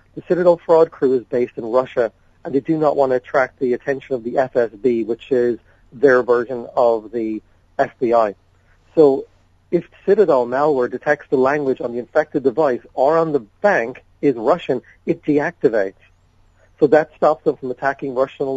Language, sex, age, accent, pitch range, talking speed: English, male, 40-59, American, 120-145 Hz, 170 wpm